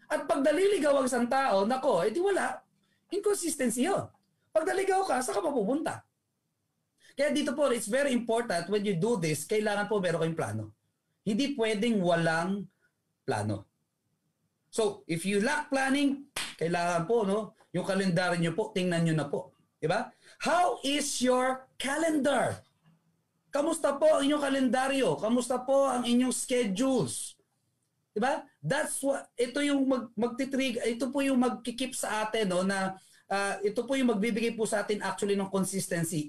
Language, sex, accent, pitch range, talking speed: Filipino, male, native, 180-260 Hz, 150 wpm